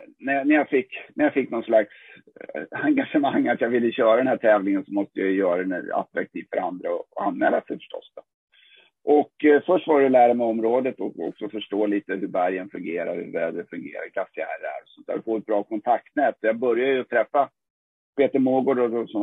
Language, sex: Swedish, male